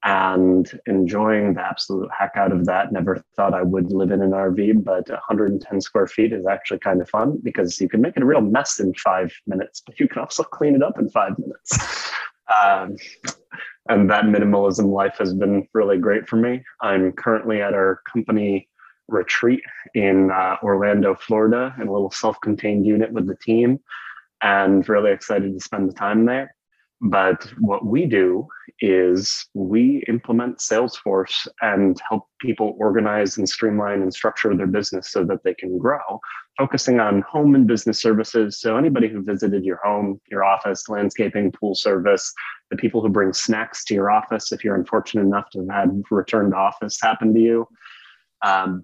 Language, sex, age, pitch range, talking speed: English, male, 20-39, 95-115 Hz, 180 wpm